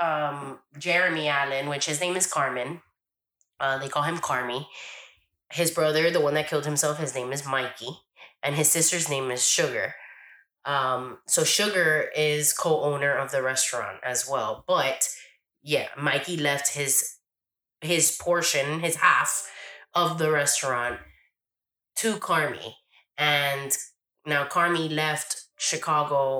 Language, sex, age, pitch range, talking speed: English, female, 20-39, 135-155 Hz, 135 wpm